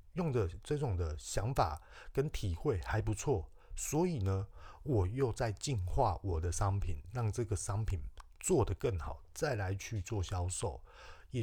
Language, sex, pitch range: Chinese, male, 95-130 Hz